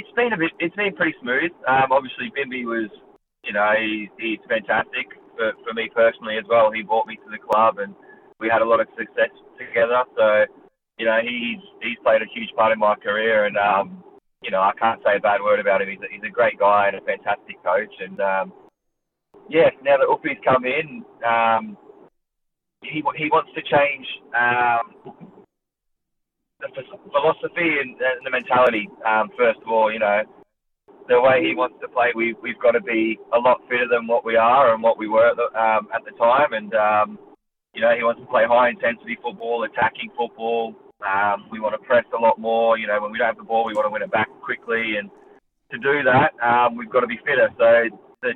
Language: English